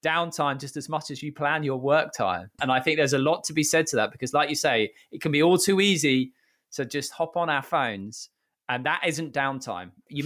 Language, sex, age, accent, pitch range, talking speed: English, male, 20-39, British, 130-175 Hz, 245 wpm